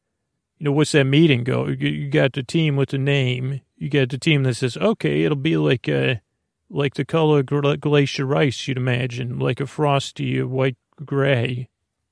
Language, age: English, 40-59